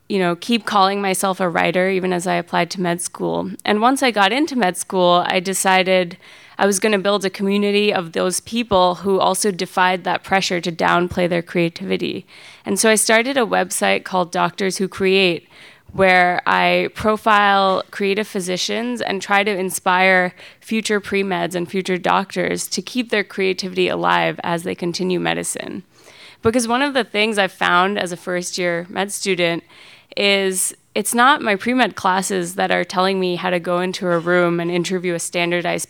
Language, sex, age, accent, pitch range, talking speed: English, female, 20-39, American, 175-200 Hz, 180 wpm